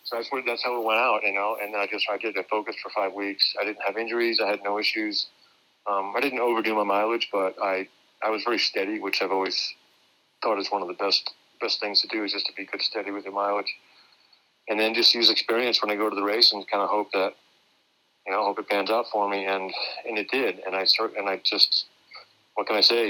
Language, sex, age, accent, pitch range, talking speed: English, male, 40-59, American, 95-110 Hz, 260 wpm